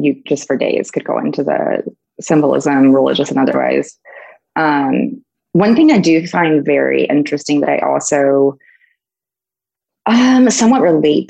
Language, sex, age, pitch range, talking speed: English, female, 20-39, 145-185 Hz, 140 wpm